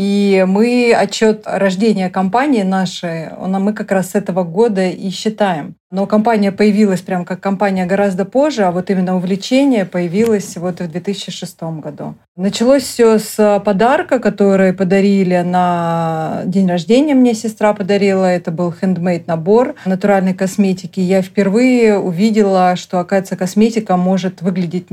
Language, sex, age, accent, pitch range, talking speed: Russian, female, 30-49, native, 185-215 Hz, 140 wpm